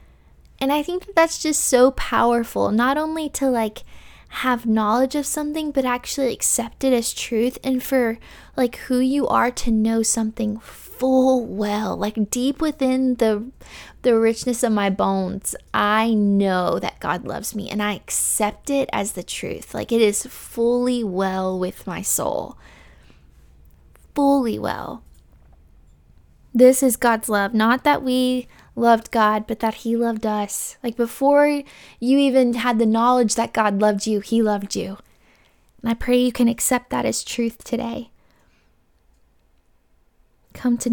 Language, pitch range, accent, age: English, 210-260 Hz, American, 10-29